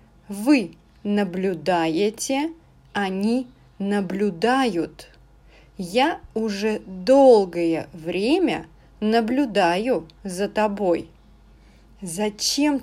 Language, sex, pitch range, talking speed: English, female, 180-240 Hz, 55 wpm